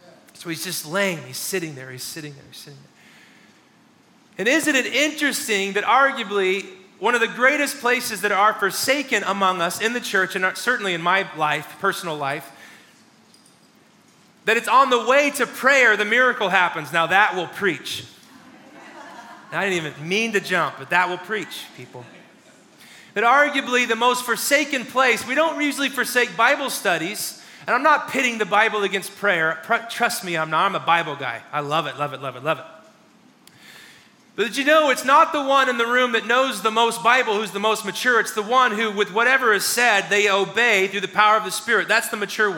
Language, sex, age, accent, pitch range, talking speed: English, male, 30-49, American, 185-245 Hz, 195 wpm